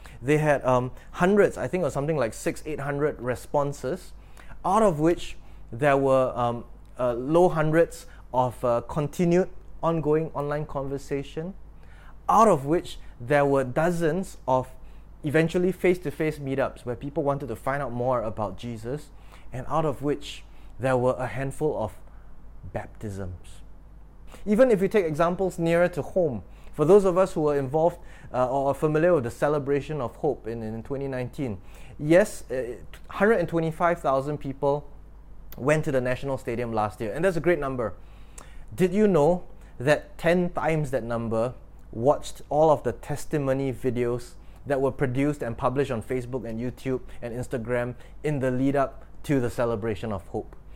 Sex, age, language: male, 20-39, English